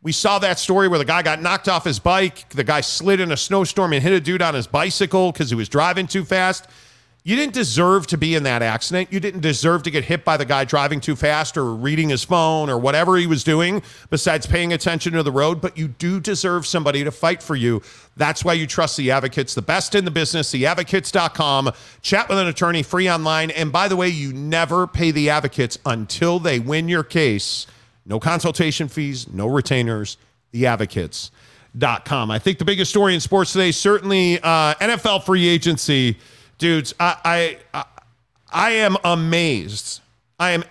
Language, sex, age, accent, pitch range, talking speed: English, male, 40-59, American, 140-180 Hz, 200 wpm